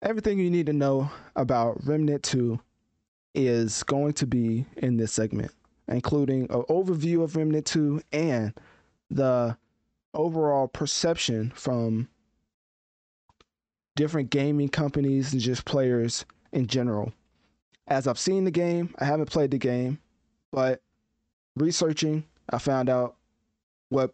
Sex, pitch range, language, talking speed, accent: male, 115-145 Hz, English, 125 wpm, American